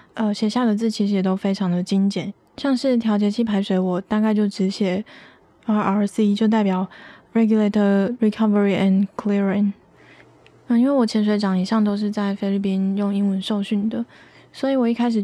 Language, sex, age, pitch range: Chinese, female, 20-39, 195-225 Hz